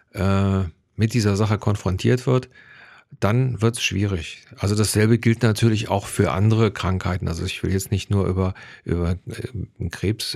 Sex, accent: male, German